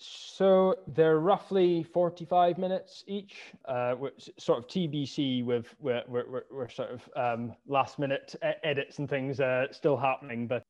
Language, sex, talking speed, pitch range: English, male, 140 wpm, 115-150 Hz